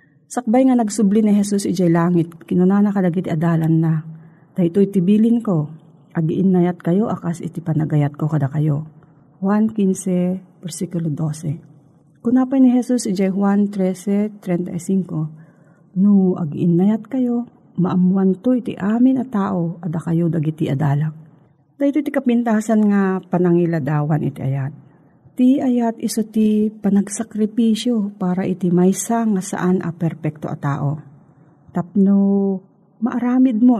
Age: 40-59